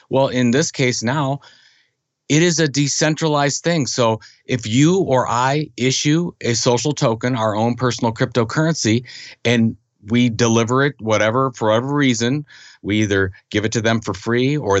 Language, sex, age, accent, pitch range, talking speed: English, male, 50-69, American, 95-140 Hz, 160 wpm